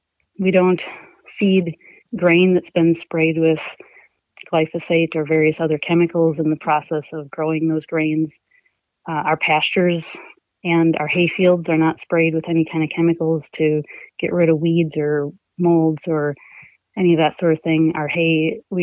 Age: 30-49